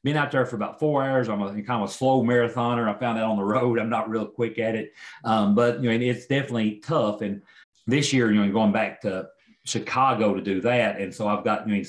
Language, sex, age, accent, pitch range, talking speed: English, male, 40-59, American, 100-120 Hz, 260 wpm